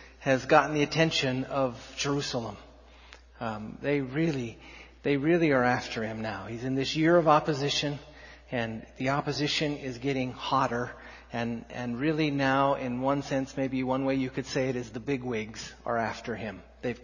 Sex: male